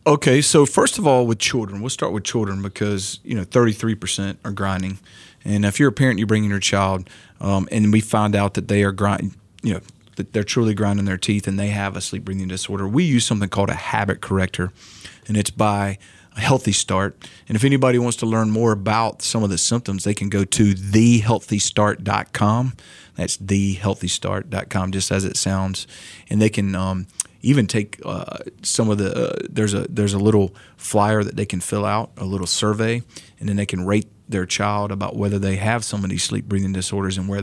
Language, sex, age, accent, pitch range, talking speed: English, male, 30-49, American, 100-110 Hz, 205 wpm